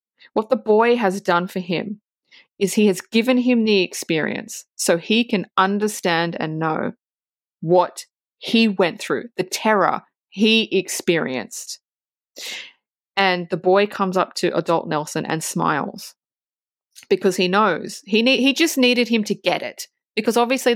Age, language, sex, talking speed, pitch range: 20-39, English, female, 150 wpm, 180-220 Hz